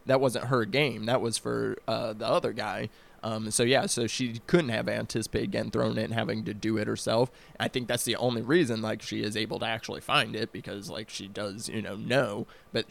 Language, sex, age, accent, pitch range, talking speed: English, male, 20-39, American, 110-130 Hz, 235 wpm